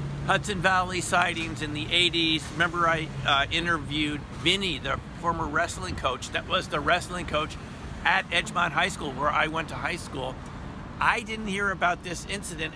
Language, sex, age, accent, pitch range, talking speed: English, male, 50-69, American, 130-170 Hz, 170 wpm